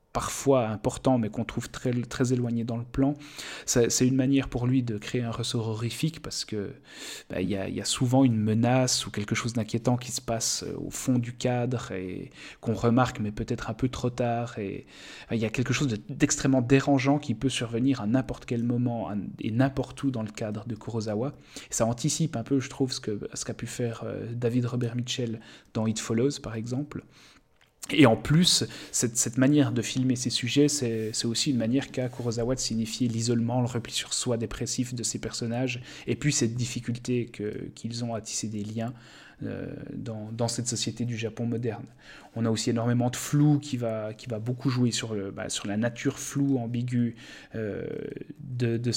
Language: French